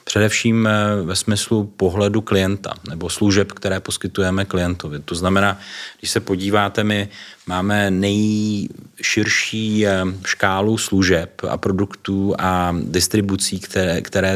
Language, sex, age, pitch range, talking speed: Czech, male, 30-49, 90-100 Hz, 110 wpm